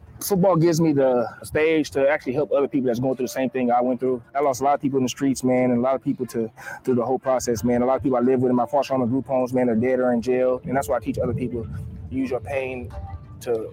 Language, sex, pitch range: English, male, 125-140 Hz